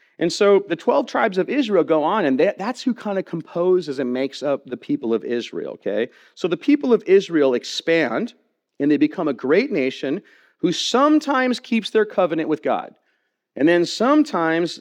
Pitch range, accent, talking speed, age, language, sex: 130-165 Hz, American, 180 wpm, 40-59, English, male